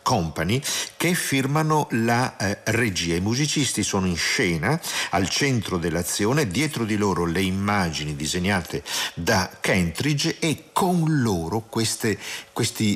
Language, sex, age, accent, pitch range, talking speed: Italian, male, 50-69, native, 80-115 Hz, 120 wpm